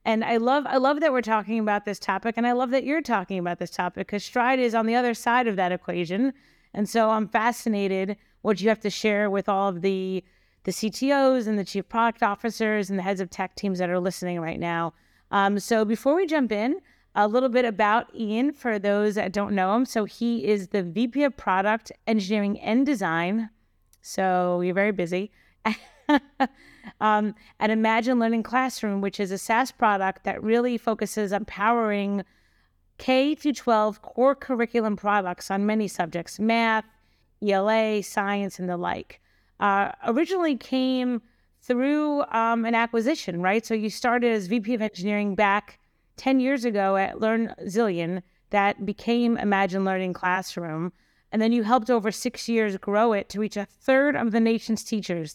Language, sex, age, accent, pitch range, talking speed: English, female, 30-49, American, 195-235 Hz, 175 wpm